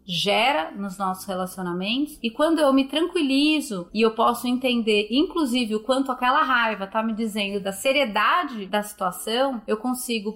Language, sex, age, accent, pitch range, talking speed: Portuguese, female, 30-49, Brazilian, 205-250 Hz, 155 wpm